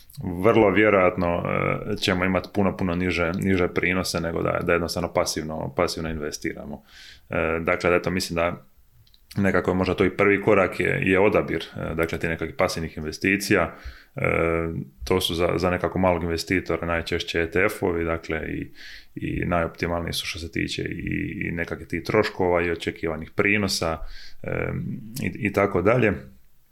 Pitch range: 80-90 Hz